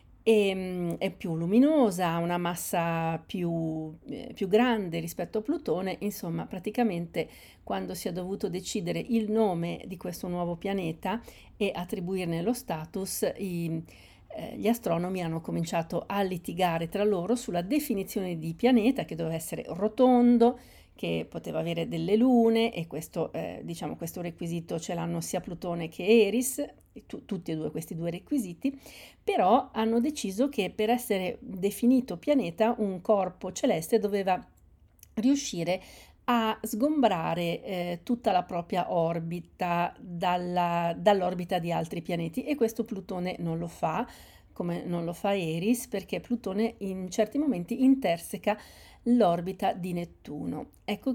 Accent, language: native, Italian